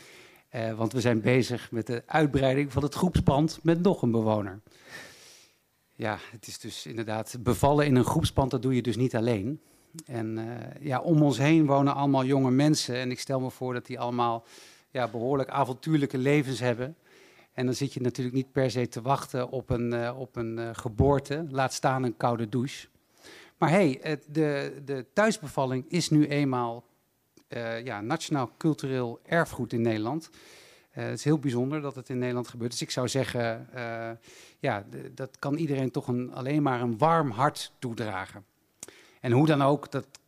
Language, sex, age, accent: Dutch, male, 50-69, Dutch